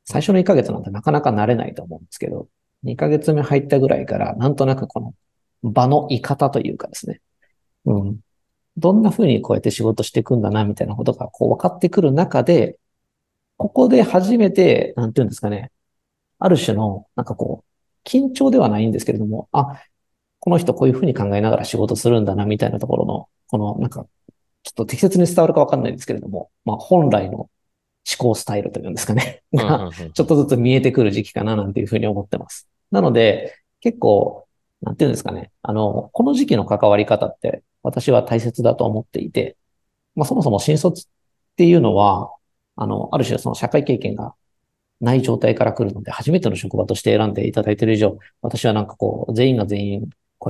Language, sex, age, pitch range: Japanese, male, 40-59, 105-145 Hz